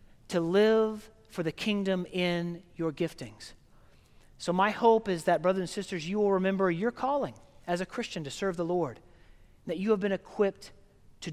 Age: 40-59